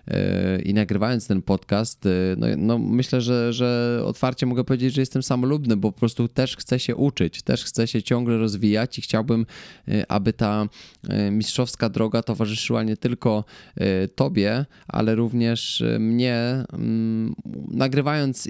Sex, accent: male, native